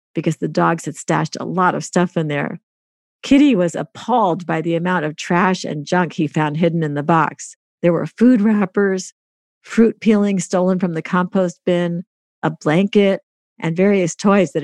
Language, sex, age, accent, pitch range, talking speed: English, female, 50-69, American, 165-205 Hz, 180 wpm